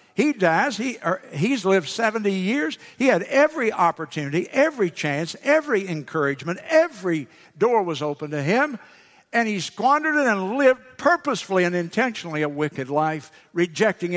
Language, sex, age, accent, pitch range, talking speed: English, male, 60-79, American, 165-245 Hz, 140 wpm